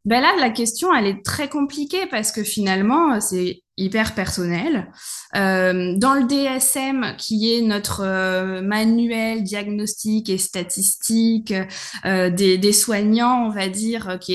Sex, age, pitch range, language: female, 20-39, 195-250 Hz, French